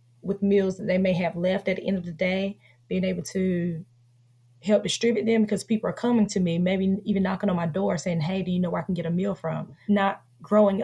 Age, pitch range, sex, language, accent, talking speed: 20-39, 170-210 Hz, female, English, American, 250 wpm